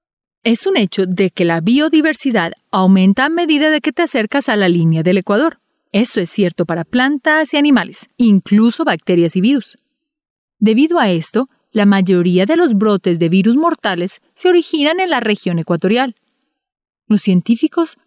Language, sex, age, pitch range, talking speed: Spanish, female, 30-49, 195-275 Hz, 165 wpm